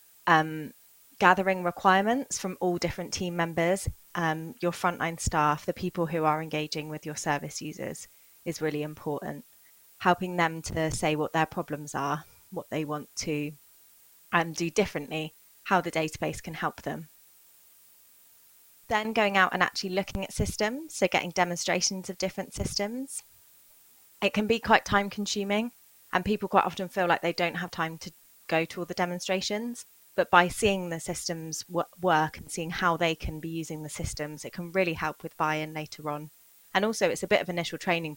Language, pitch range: English, 150-185 Hz